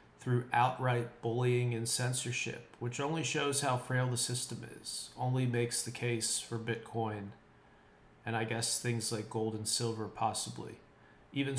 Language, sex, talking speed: English, male, 150 wpm